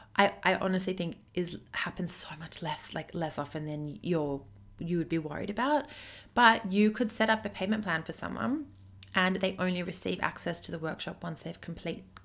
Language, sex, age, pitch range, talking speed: English, female, 30-49, 170-210 Hz, 195 wpm